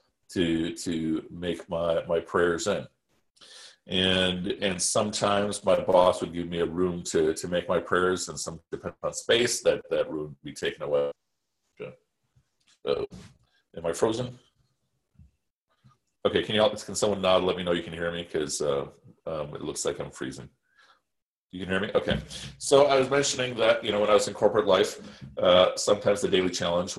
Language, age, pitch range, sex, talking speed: English, 40-59, 95-140 Hz, male, 190 wpm